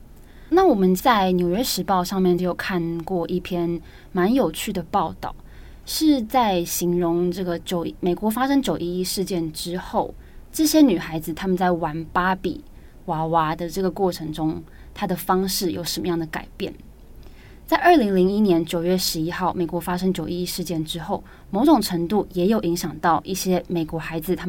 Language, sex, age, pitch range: Chinese, female, 20-39, 170-195 Hz